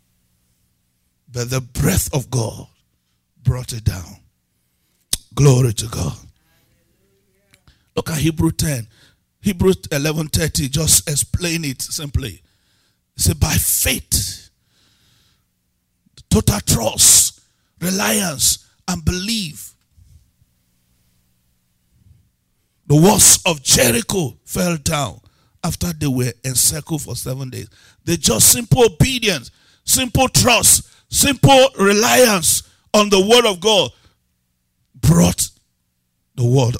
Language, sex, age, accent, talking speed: English, male, 50-69, Nigerian, 95 wpm